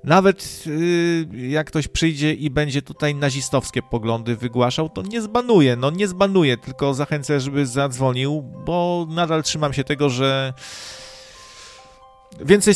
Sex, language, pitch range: male, Polish, 130-170 Hz